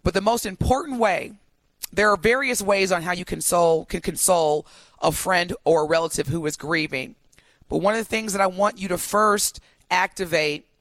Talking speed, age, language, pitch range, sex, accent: 190 wpm, 30-49, English, 170-215 Hz, female, American